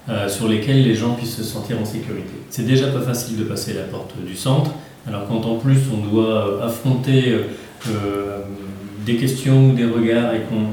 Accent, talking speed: French, 200 wpm